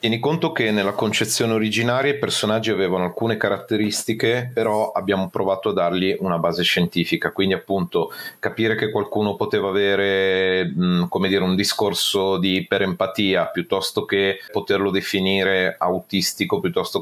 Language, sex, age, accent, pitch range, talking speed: Italian, male, 30-49, native, 95-115 Hz, 135 wpm